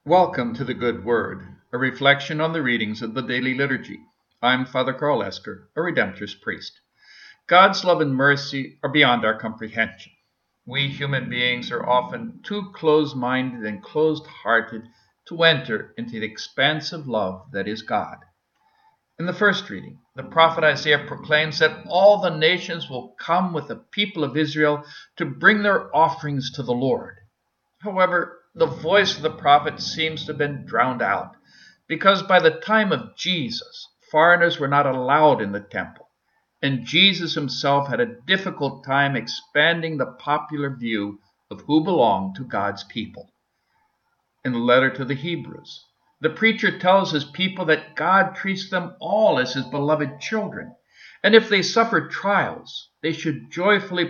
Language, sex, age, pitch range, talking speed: English, male, 50-69, 130-185 Hz, 155 wpm